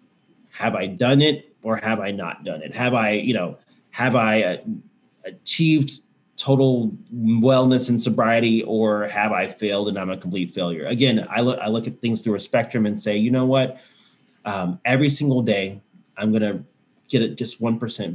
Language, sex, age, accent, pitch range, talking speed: English, male, 30-49, American, 105-130 Hz, 180 wpm